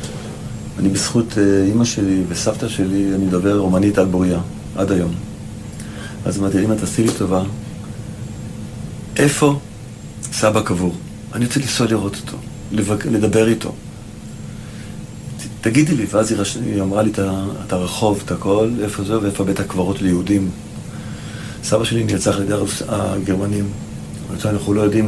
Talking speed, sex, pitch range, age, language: 140 wpm, male, 95-110 Hz, 40-59, Hebrew